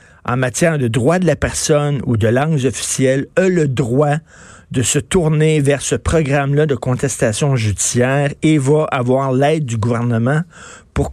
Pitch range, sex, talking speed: 120-160 Hz, male, 160 wpm